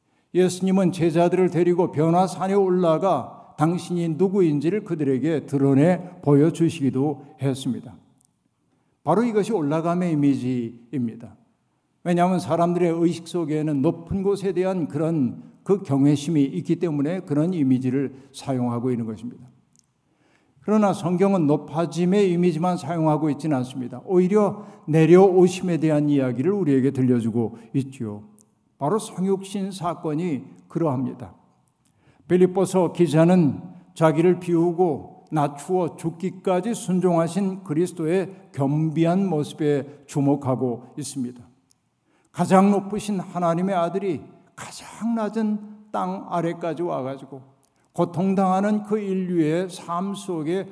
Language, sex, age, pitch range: Korean, male, 50-69, 140-185 Hz